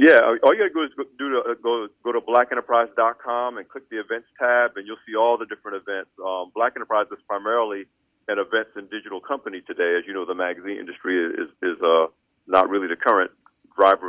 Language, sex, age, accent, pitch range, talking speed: English, male, 40-59, American, 95-120 Hz, 220 wpm